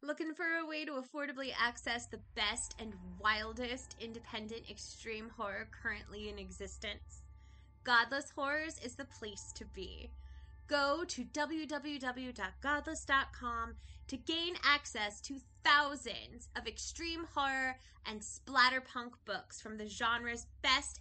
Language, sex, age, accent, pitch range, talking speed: English, female, 20-39, American, 225-295 Hz, 120 wpm